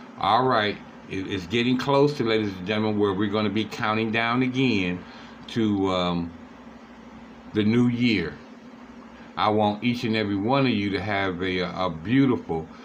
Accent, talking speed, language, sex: American, 165 wpm, English, male